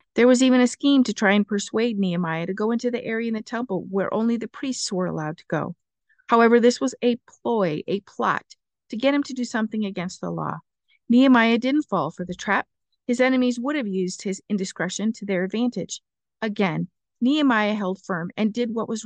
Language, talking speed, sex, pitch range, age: English, 210 wpm, female, 195-250 Hz, 50-69